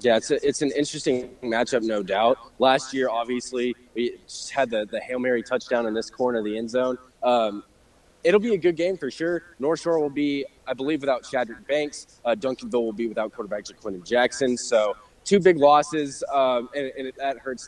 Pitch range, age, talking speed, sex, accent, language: 120-150 Hz, 20-39, 205 wpm, male, American, English